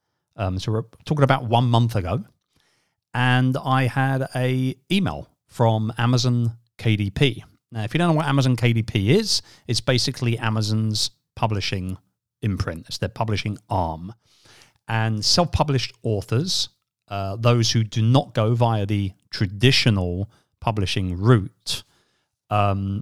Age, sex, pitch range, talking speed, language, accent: 40-59, male, 100-125 Hz, 130 wpm, English, British